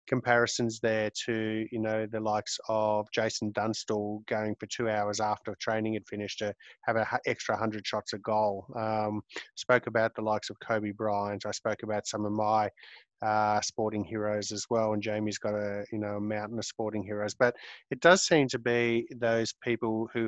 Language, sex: English, male